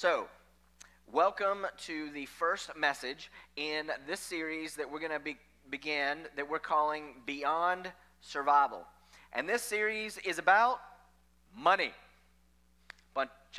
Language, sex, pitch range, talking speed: English, male, 115-155 Hz, 115 wpm